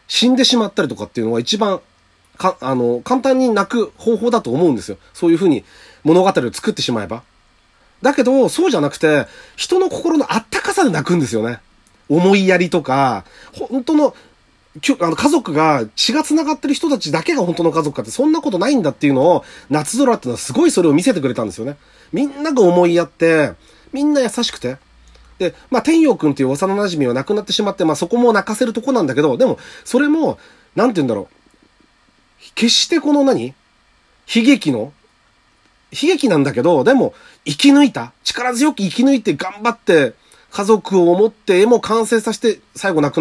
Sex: male